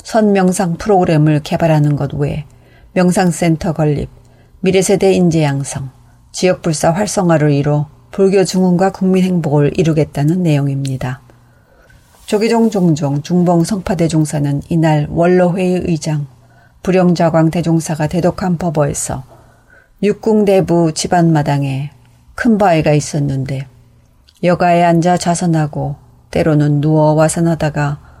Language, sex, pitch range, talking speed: English, female, 145-180 Hz, 95 wpm